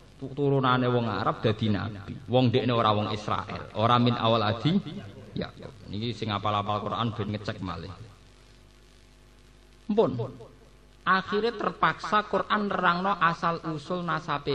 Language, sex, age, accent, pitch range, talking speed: Indonesian, male, 50-69, native, 115-150 Hz, 120 wpm